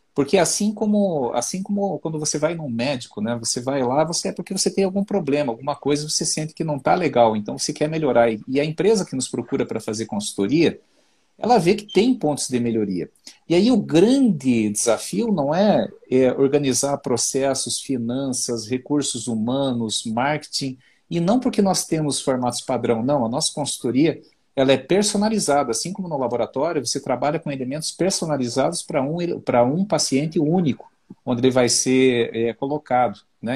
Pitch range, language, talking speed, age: 125-170 Hz, Portuguese, 170 wpm, 50-69